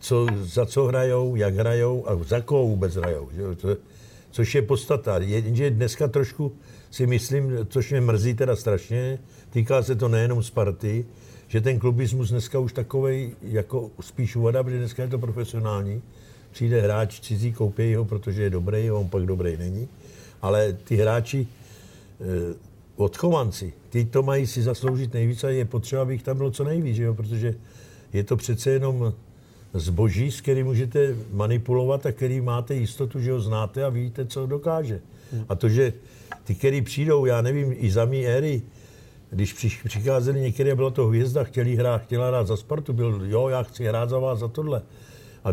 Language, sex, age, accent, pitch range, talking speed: Czech, male, 60-79, native, 110-130 Hz, 175 wpm